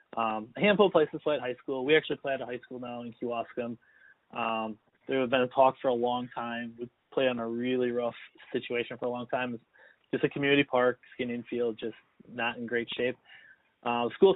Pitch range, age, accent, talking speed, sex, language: 120-140 Hz, 20-39, American, 225 wpm, male, English